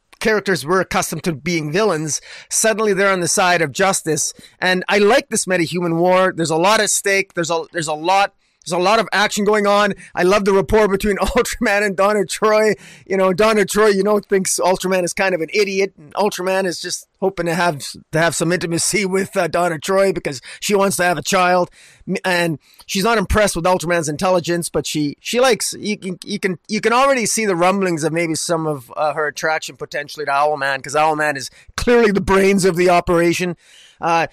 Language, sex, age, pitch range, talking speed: English, male, 30-49, 165-210 Hz, 210 wpm